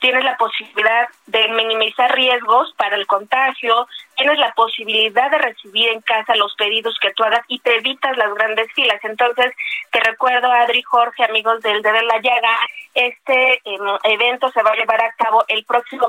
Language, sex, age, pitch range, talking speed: Spanish, female, 20-39, 220-255 Hz, 185 wpm